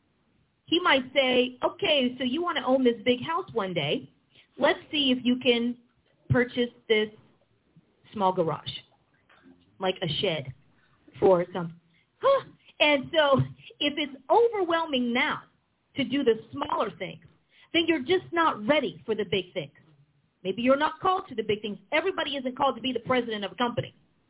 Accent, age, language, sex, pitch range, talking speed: American, 40-59, English, female, 210-310 Hz, 165 wpm